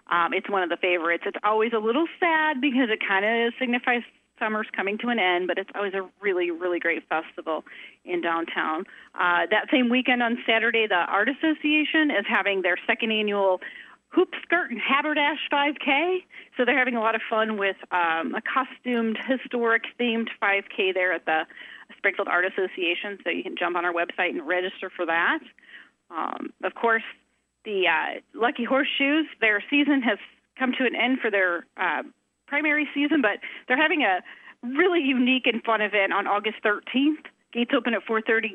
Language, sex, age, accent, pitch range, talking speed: English, female, 30-49, American, 200-265 Hz, 180 wpm